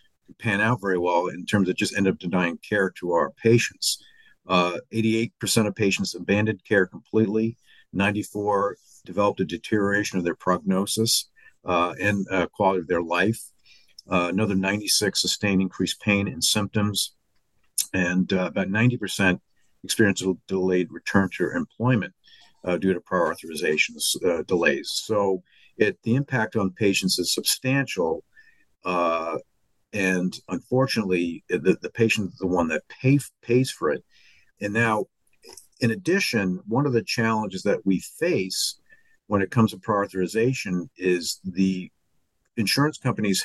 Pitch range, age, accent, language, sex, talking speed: 95-115 Hz, 50-69, American, English, male, 145 wpm